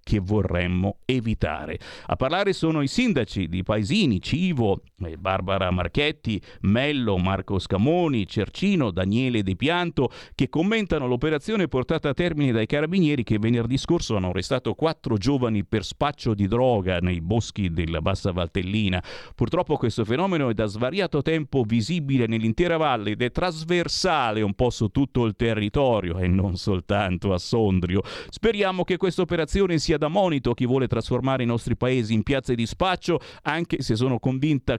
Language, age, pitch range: Italian, 50-69, 100-145 Hz